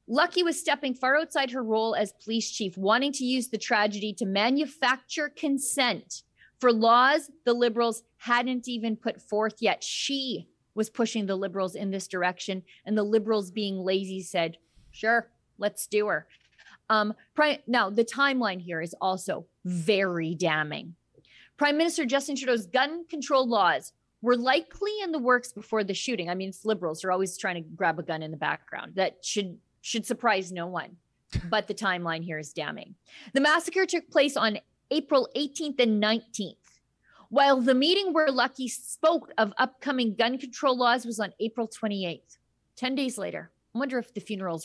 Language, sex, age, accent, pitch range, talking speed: English, female, 30-49, American, 185-255 Hz, 170 wpm